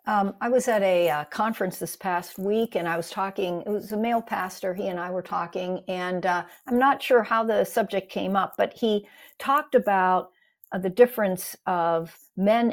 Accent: American